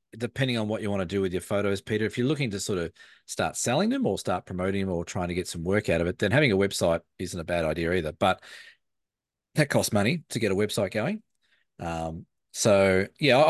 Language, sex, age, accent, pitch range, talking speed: English, male, 30-49, Australian, 90-120 Hz, 240 wpm